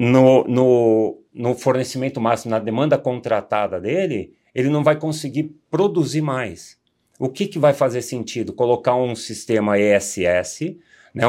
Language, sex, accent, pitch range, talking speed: Portuguese, male, Brazilian, 115-155 Hz, 135 wpm